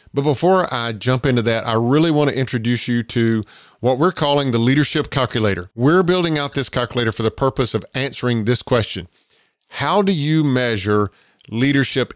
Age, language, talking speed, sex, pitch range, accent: 40-59, English, 180 wpm, male, 115-145 Hz, American